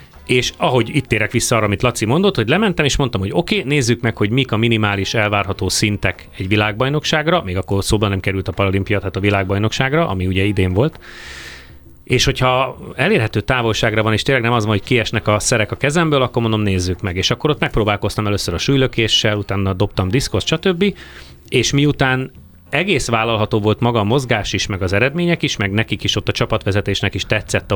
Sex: male